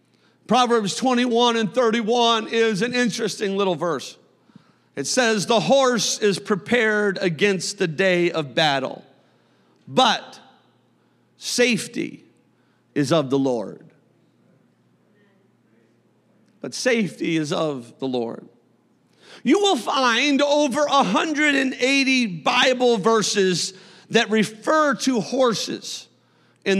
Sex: male